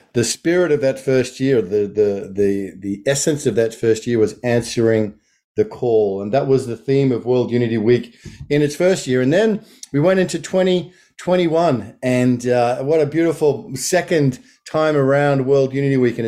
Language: English